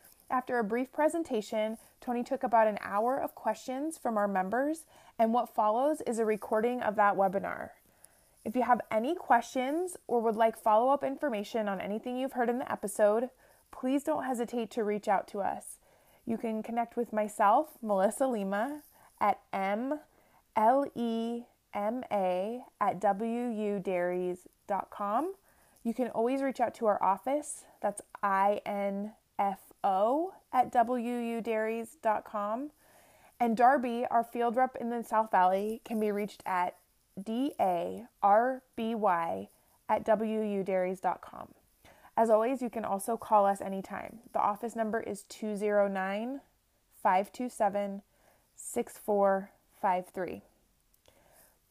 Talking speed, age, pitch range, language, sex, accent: 120 wpm, 20-39, 205-250 Hz, English, female, American